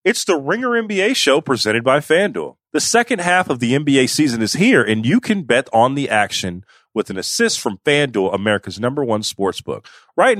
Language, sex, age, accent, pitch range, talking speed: English, male, 40-59, American, 110-155 Hz, 195 wpm